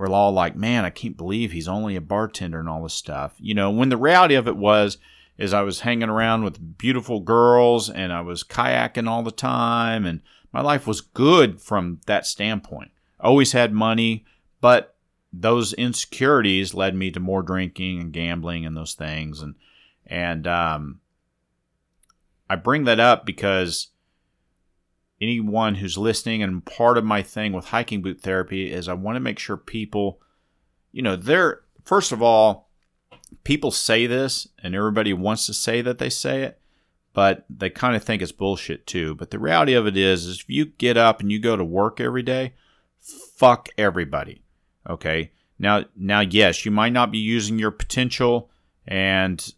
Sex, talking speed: male, 180 wpm